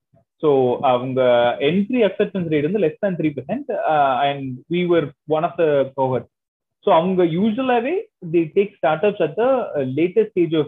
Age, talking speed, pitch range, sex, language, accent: 20-39, 185 wpm, 140-205 Hz, male, Tamil, native